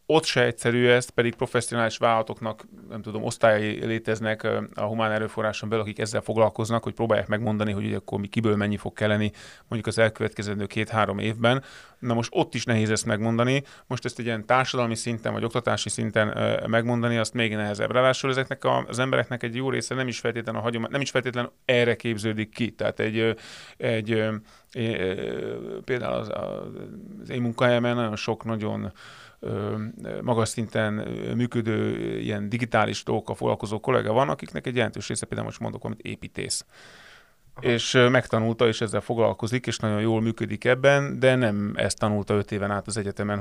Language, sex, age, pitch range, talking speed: Hungarian, male, 30-49, 105-125 Hz, 160 wpm